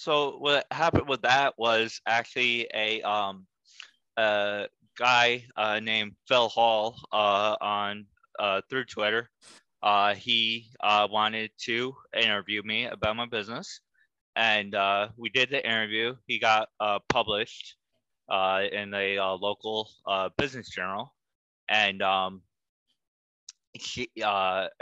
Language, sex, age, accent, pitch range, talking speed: English, male, 20-39, American, 95-110 Hz, 125 wpm